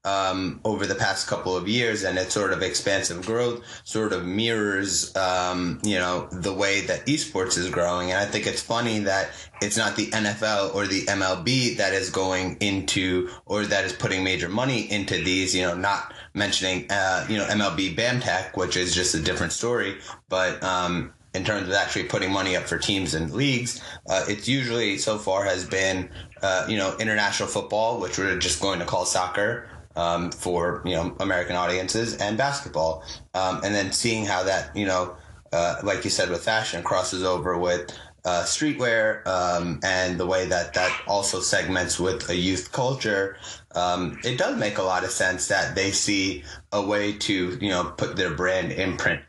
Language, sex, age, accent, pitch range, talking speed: English, male, 20-39, American, 90-105 Hz, 190 wpm